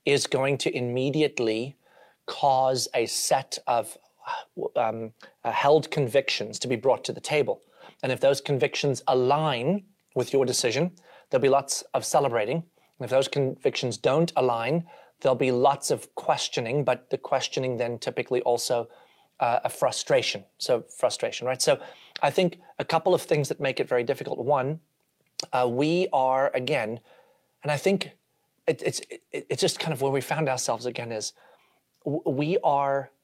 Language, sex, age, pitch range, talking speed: English, male, 30-49, 130-165 Hz, 160 wpm